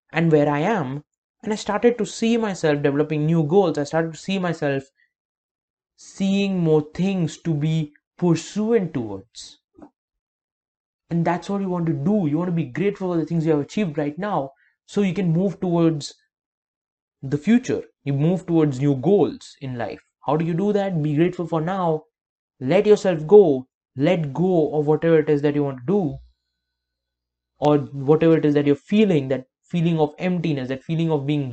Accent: Indian